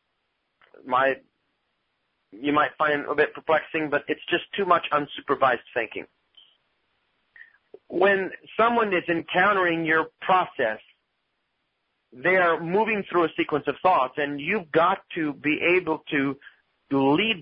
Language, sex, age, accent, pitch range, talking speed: English, male, 40-59, American, 135-175 Hz, 125 wpm